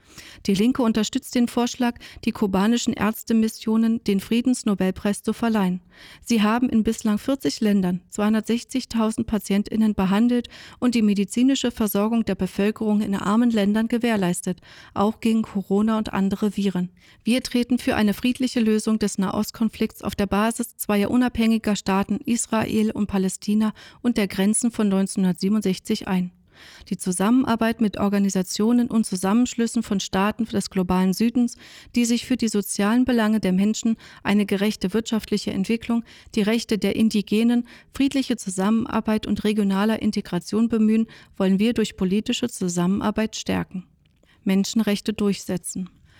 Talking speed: 130 wpm